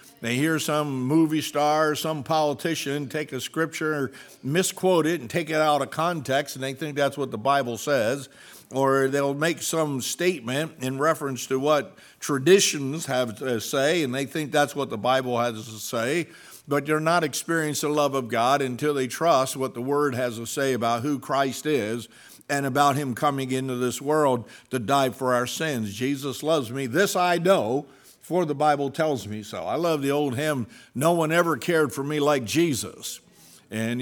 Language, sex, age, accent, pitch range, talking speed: English, male, 60-79, American, 130-160 Hz, 190 wpm